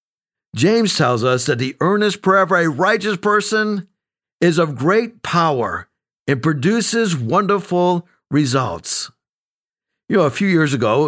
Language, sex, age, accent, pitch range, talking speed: English, male, 50-69, American, 125-180 Hz, 140 wpm